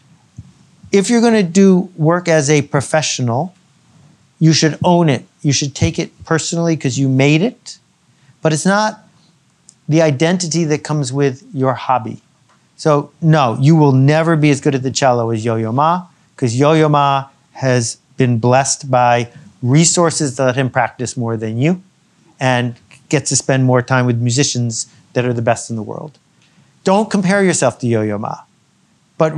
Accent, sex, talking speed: American, male, 170 wpm